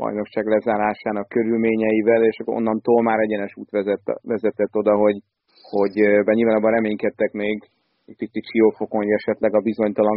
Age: 30-49